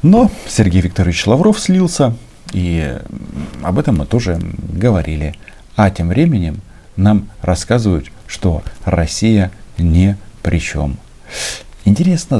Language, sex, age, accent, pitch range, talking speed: Russian, male, 50-69, native, 85-110 Hz, 100 wpm